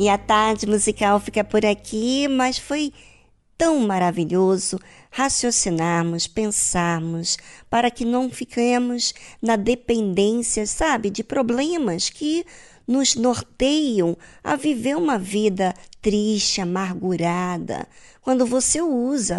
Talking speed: 105 wpm